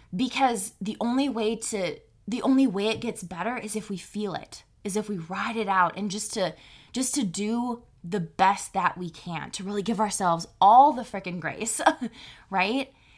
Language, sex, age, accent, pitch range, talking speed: English, female, 20-39, American, 185-230 Hz, 190 wpm